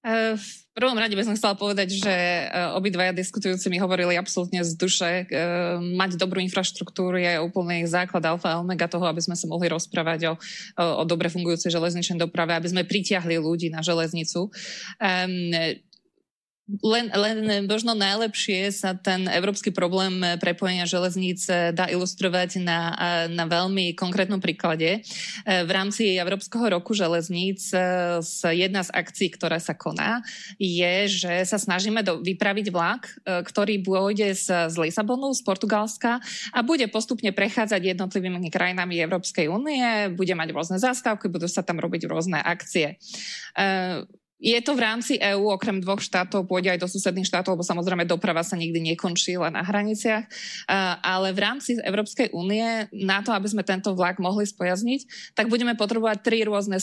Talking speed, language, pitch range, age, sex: 145 wpm, Slovak, 175-205 Hz, 20-39, female